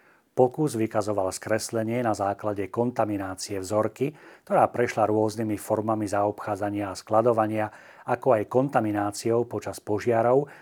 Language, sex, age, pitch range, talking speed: Slovak, male, 40-59, 100-120 Hz, 105 wpm